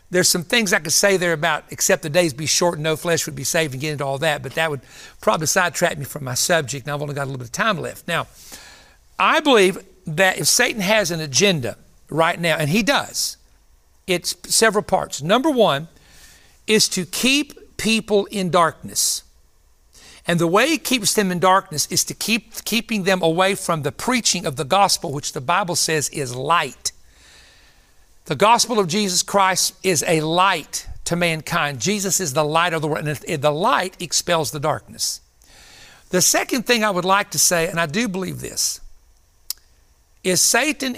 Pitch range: 145-200 Hz